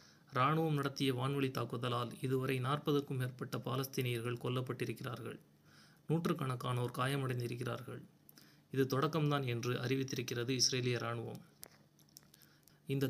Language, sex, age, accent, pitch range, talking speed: Tamil, male, 30-49, native, 125-145 Hz, 85 wpm